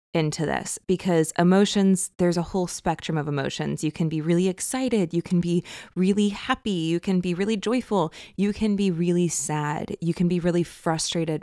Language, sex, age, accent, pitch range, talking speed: English, female, 20-39, American, 160-195 Hz, 185 wpm